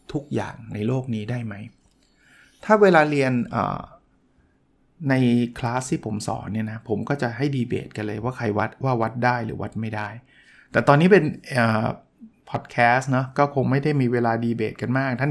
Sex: male